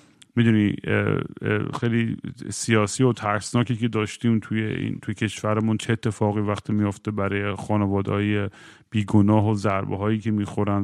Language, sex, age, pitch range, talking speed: Persian, male, 40-59, 110-135 Hz, 125 wpm